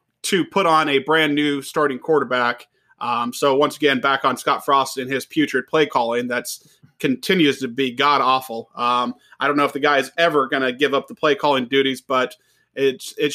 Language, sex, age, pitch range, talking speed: English, male, 30-49, 135-155 Hz, 210 wpm